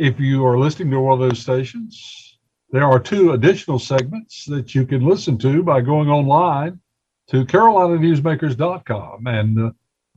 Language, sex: English, male